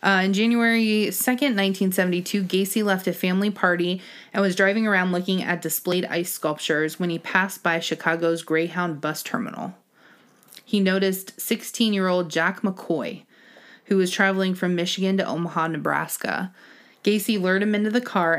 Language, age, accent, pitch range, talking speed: English, 20-39, American, 170-205 Hz, 150 wpm